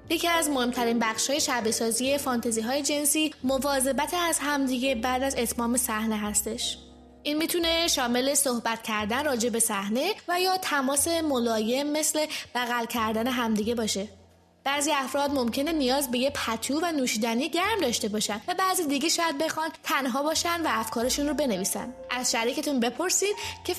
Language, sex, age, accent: English, female, 20-39, Canadian